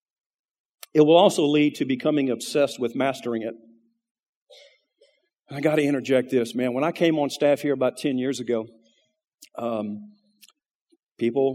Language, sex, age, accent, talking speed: English, male, 40-59, American, 145 wpm